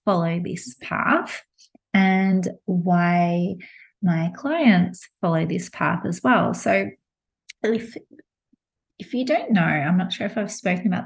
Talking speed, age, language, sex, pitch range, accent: 135 wpm, 30-49, English, female, 170-215 Hz, Australian